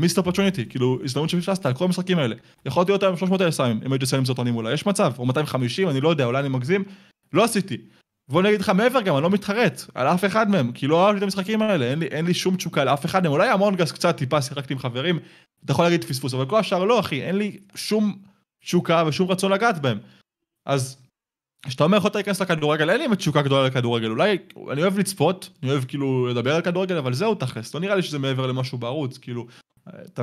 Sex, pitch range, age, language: male, 135-185 Hz, 20-39, Hebrew